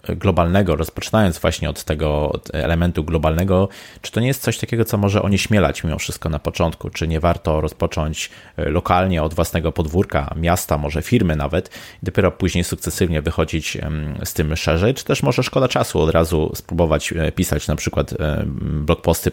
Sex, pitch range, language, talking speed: male, 75-90 Hz, Polish, 160 wpm